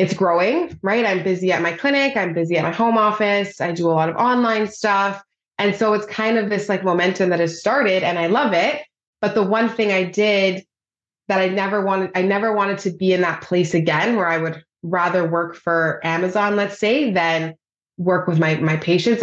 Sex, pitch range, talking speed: female, 170-205 Hz, 220 wpm